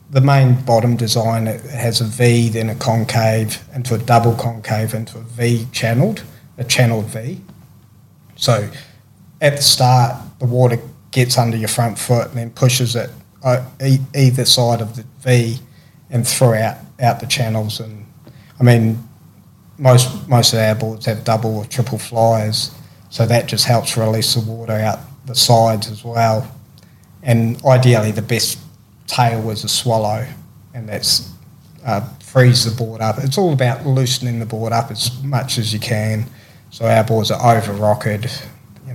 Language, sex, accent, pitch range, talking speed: English, male, Australian, 115-130 Hz, 165 wpm